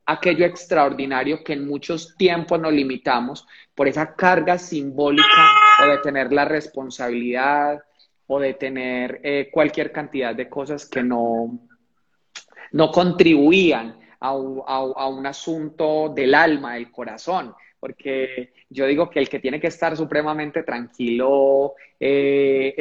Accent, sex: Colombian, male